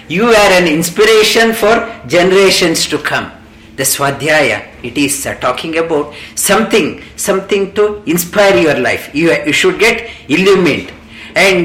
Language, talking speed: English, 140 wpm